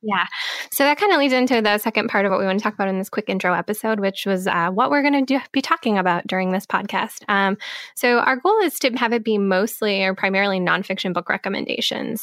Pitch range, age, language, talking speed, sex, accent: 190-230 Hz, 10-29, English, 245 wpm, female, American